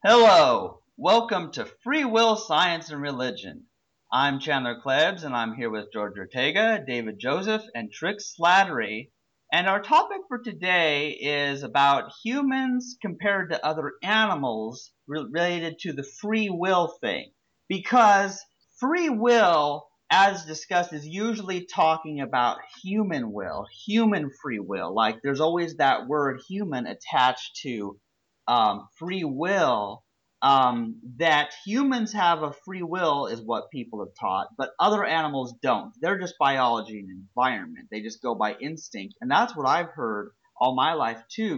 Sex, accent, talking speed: male, American, 145 wpm